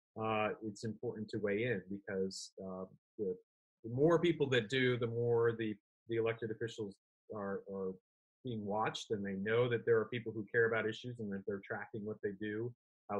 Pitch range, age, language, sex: 100-120 Hz, 30-49, English, male